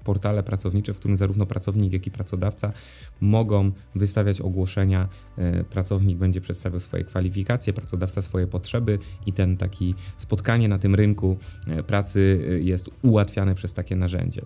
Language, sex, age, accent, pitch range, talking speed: Polish, male, 20-39, native, 95-115 Hz, 135 wpm